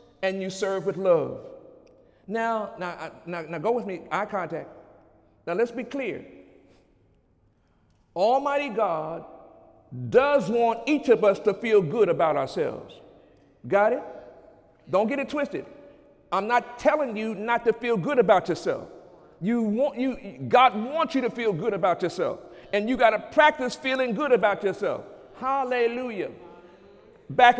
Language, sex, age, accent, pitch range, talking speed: English, male, 50-69, American, 215-275 Hz, 145 wpm